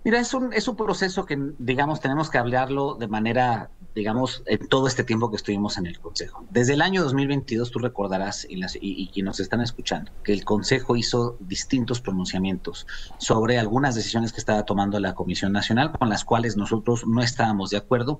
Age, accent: 40-59, Mexican